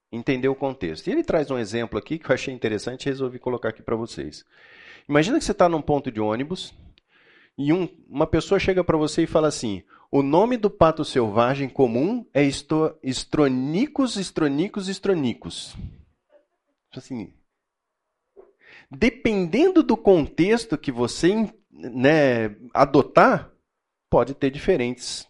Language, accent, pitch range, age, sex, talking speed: Portuguese, Brazilian, 130-205 Hz, 40-59, male, 140 wpm